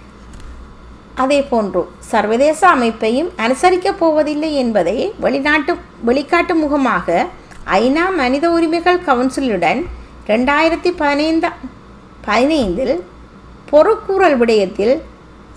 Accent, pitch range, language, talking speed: native, 240-330 Hz, Tamil, 70 wpm